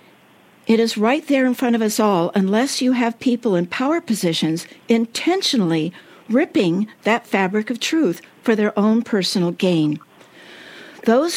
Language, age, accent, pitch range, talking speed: English, 60-79, American, 190-245 Hz, 150 wpm